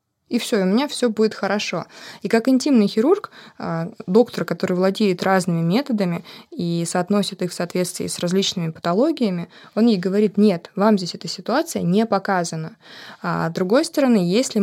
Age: 20-39